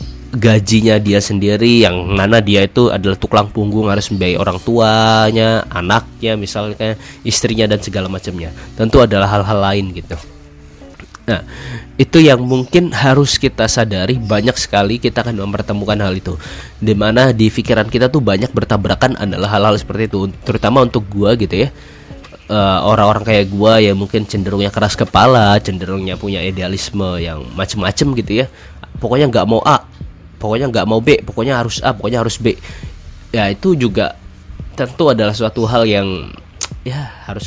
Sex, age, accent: male, 20-39, native